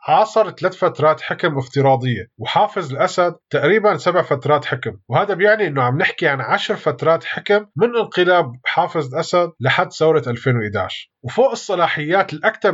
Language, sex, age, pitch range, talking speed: Arabic, male, 20-39, 135-180 Hz, 140 wpm